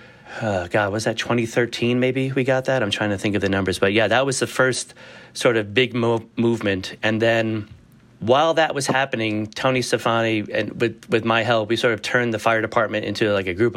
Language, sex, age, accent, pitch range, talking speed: English, male, 30-49, American, 100-115 Hz, 220 wpm